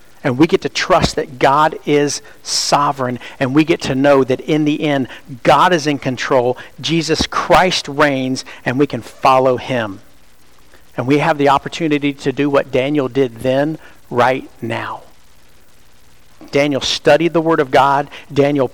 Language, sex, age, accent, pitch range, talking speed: English, male, 50-69, American, 120-150 Hz, 160 wpm